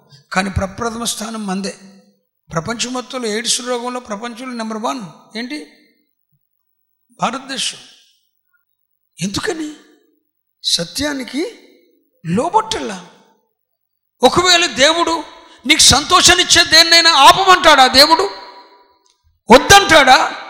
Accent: native